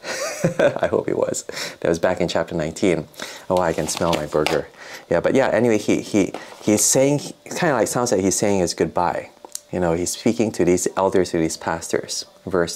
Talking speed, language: 205 wpm, English